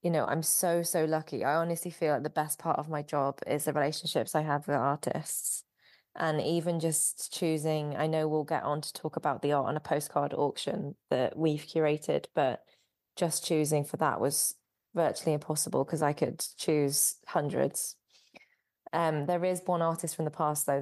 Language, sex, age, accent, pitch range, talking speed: English, female, 20-39, British, 145-160 Hz, 190 wpm